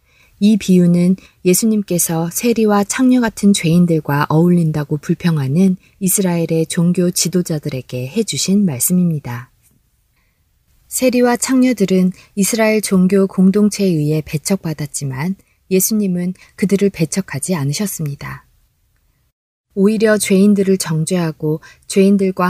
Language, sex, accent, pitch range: Korean, female, native, 155-200 Hz